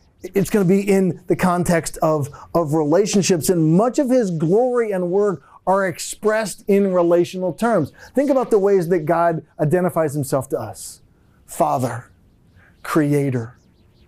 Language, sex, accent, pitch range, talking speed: English, male, American, 155-200 Hz, 140 wpm